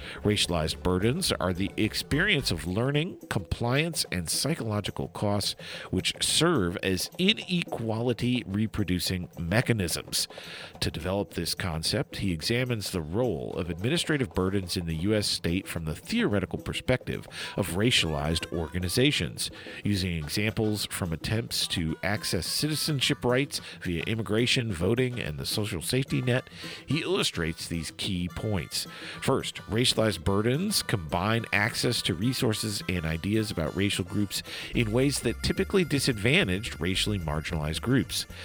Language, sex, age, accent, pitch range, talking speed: English, male, 50-69, American, 85-120 Hz, 125 wpm